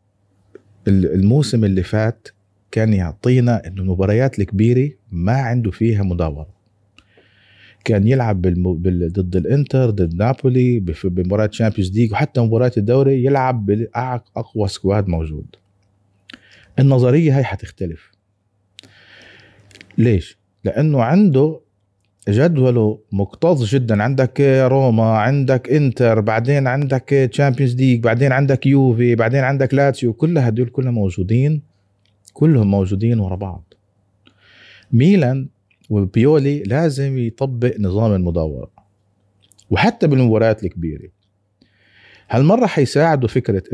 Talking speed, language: 95 wpm, Arabic